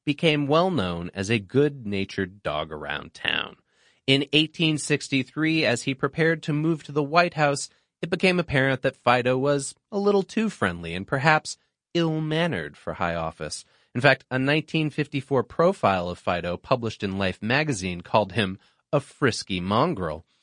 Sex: male